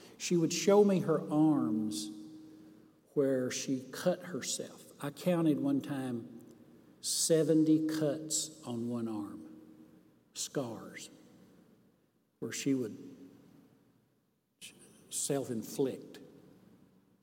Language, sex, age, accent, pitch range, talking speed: English, male, 60-79, American, 140-190 Hz, 85 wpm